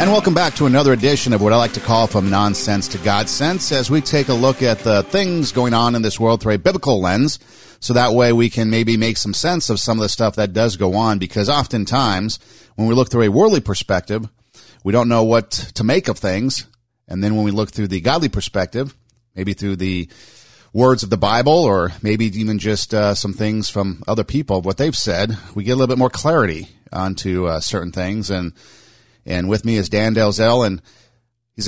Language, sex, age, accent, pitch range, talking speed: English, male, 40-59, American, 100-125 Hz, 225 wpm